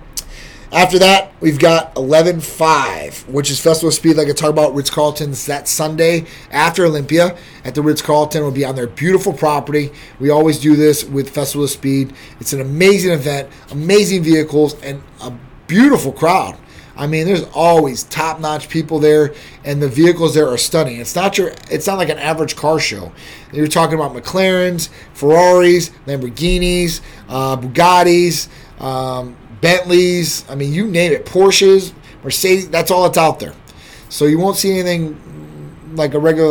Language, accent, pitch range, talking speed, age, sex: English, American, 140-170 Hz, 170 wpm, 30-49, male